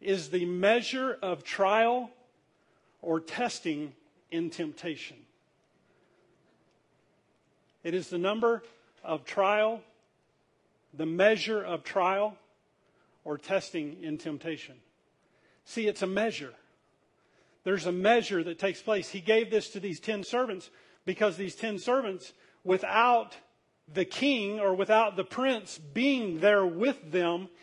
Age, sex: 40-59, male